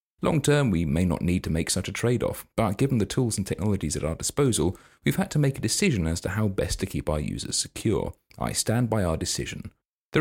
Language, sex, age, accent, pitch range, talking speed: English, male, 30-49, British, 90-120 Hz, 235 wpm